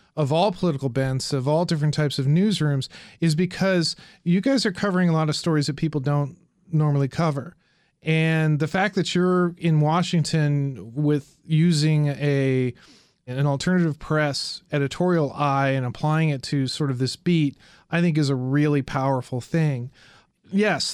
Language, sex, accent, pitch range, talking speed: English, male, American, 140-165 Hz, 160 wpm